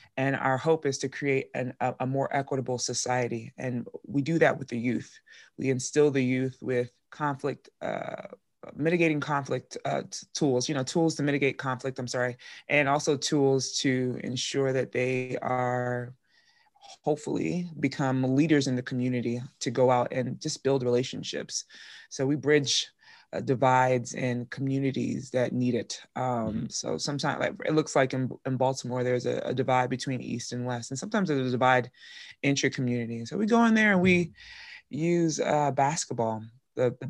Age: 20-39